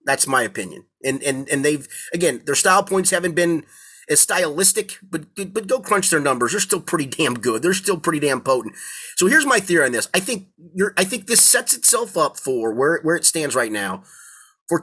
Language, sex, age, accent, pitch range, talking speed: English, male, 30-49, American, 150-200 Hz, 220 wpm